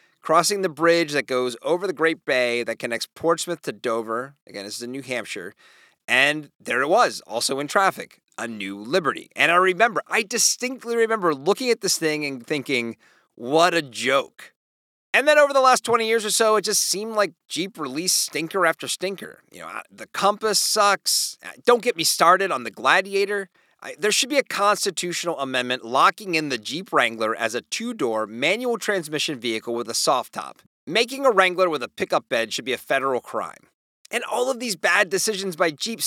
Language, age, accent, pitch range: English, 30-49, American, 130-200 Hz